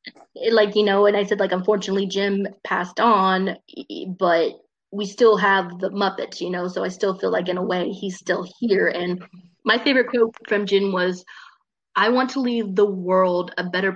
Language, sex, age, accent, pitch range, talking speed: English, female, 20-39, American, 190-230 Hz, 195 wpm